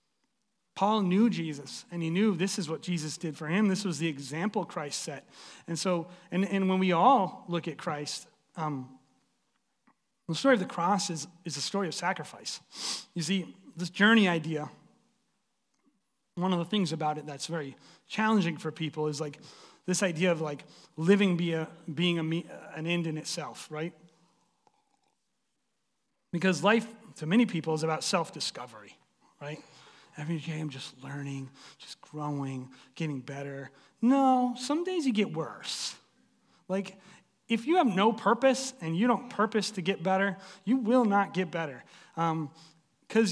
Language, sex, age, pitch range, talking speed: English, male, 30-49, 160-220 Hz, 160 wpm